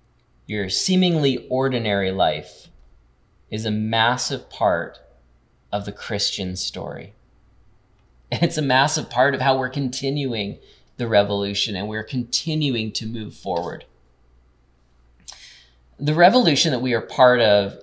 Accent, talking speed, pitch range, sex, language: American, 120 wpm, 95-130 Hz, male, English